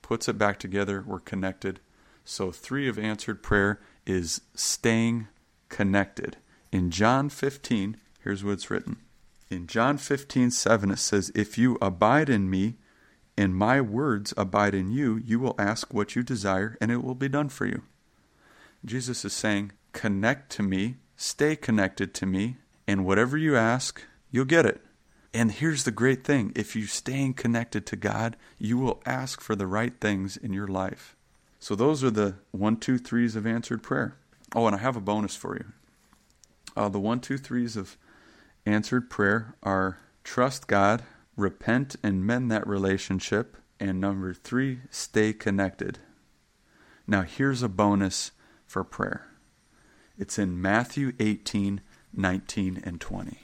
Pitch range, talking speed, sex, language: 100-125 Hz, 155 wpm, male, English